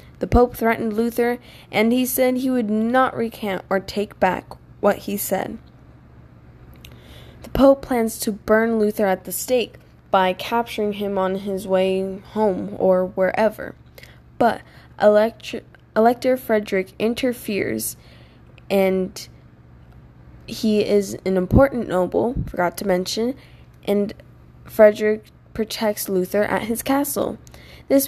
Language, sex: English, female